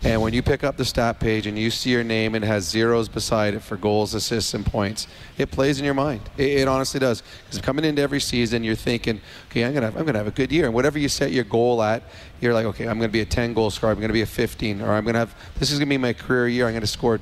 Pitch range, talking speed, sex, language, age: 110-130 Hz, 310 wpm, male, English, 30-49